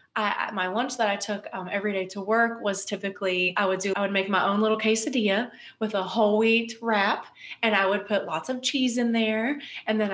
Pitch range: 190-235 Hz